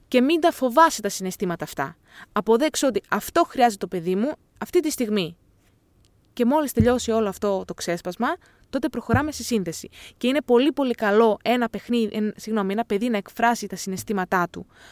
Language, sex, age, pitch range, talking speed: Greek, female, 20-39, 200-275 Hz, 170 wpm